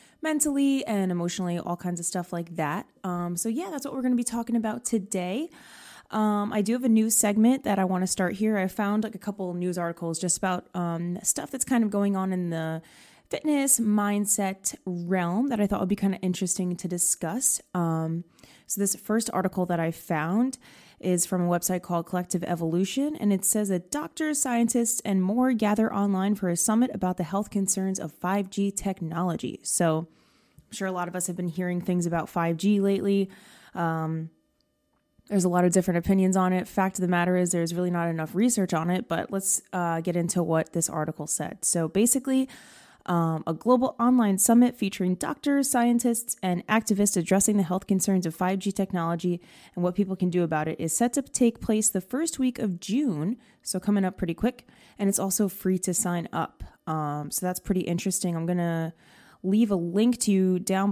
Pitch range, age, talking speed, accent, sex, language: 175-215 Hz, 20-39, 205 wpm, American, female, English